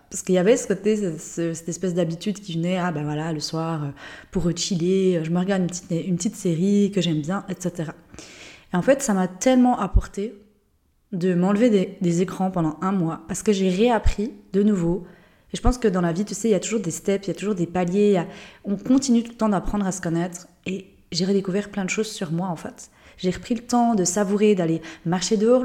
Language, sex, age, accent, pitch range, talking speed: French, female, 20-39, French, 175-215 Hz, 240 wpm